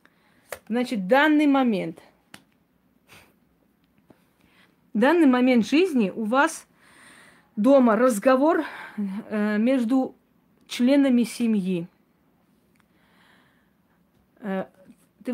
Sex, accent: female, native